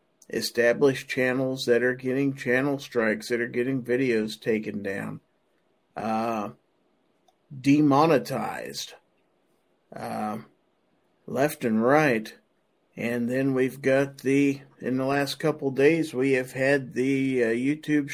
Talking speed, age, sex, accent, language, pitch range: 115 wpm, 50-69, male, American, English, 115-140 Hz